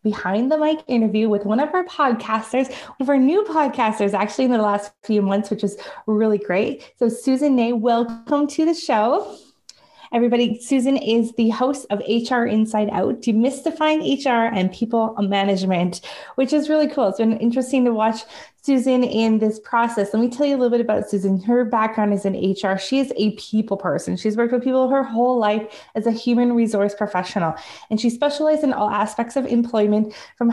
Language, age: English, 20-39